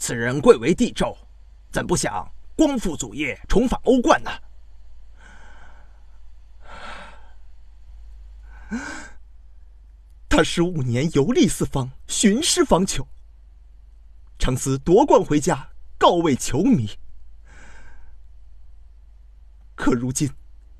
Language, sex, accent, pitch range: Chinese, male, native, 70-80 Hz